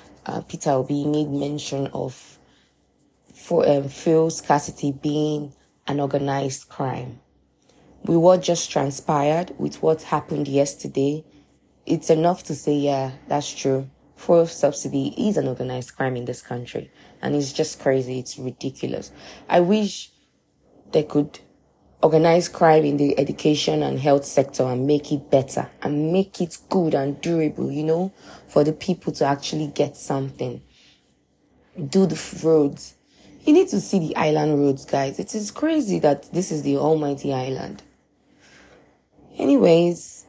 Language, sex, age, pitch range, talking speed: English, female, 20-39, 140-170 Hz, 145 wpm